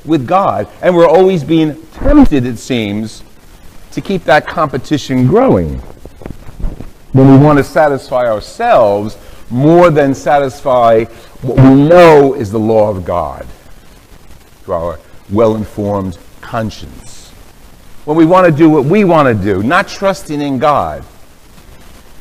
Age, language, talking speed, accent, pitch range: 50-69, English, 130 wpm, American, 110-165 Hz